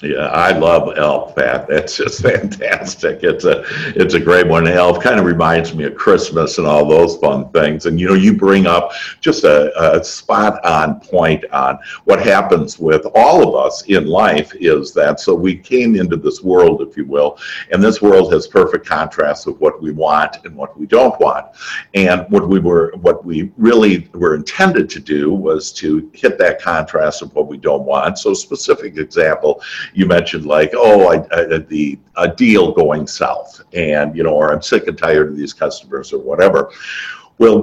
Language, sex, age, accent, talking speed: English, male, 60-79, American, 185 wpm